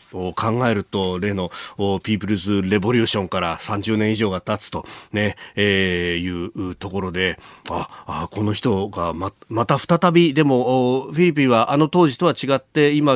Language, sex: Japanese, male